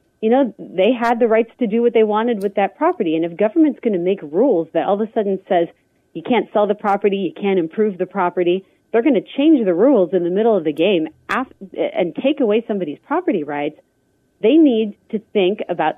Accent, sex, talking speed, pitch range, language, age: American, female, 225 wpm, 170-215 Hz, English, 30-49